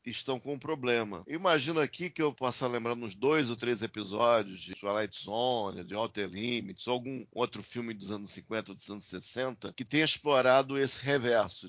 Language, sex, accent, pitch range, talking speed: Portuguese, male, Brazilian, 115-155 Hz, 190 wpm